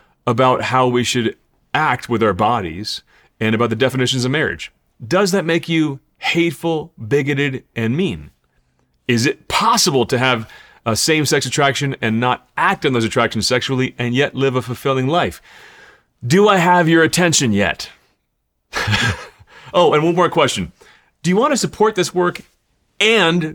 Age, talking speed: 30-49, 160 wpm